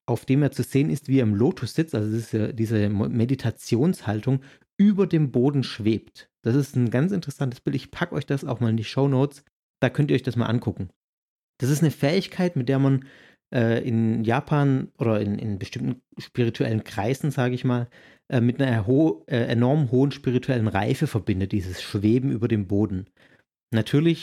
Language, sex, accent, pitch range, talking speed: German, male, German, 110-140 Hz, 185 wpm